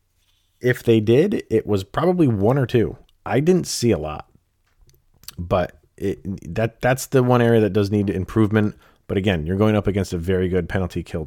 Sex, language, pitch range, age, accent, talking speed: male, English, 90-110 Hz, 30-49, American, 190 wpm